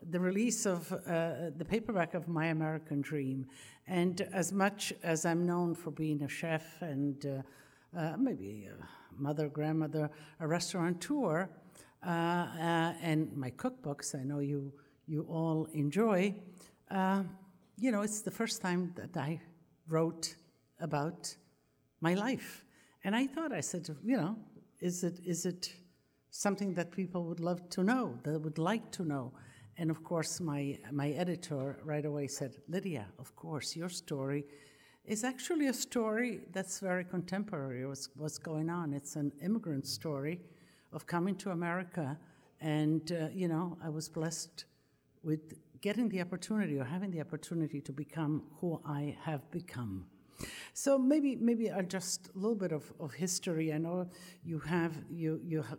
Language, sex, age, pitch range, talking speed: English, female, 60-79, 150-185 Hz, 155 wpm